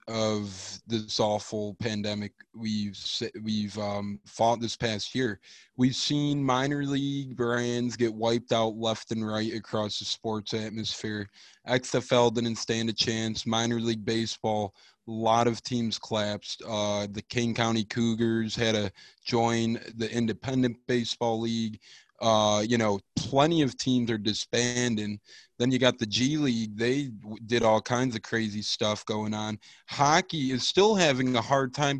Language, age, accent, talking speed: English, 20-39, American, 150 wpm